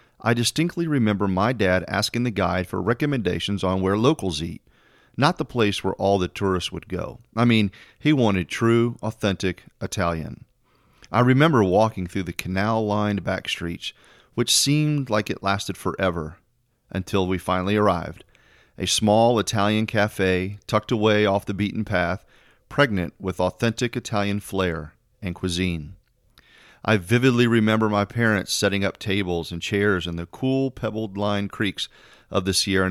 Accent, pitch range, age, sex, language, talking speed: American, 95-115 Hz, 40-59, male, English, 155 wpm